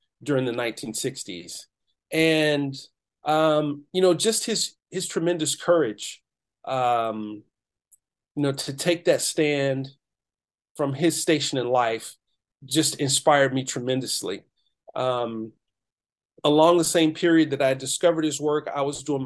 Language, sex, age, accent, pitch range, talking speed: English, male, 40-59, American, 130-160 Hz, 130 wpm